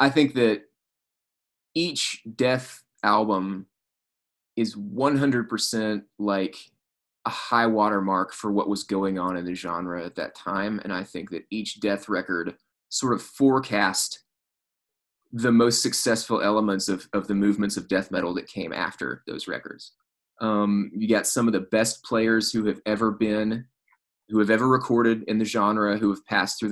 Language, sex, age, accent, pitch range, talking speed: English, male, 20-39, American, 100-120 Hz, 160 wpm